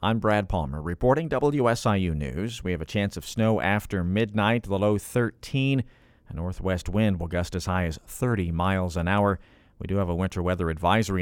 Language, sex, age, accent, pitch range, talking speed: English, male, 50-69, American, 95-120 Hz, 195 wpm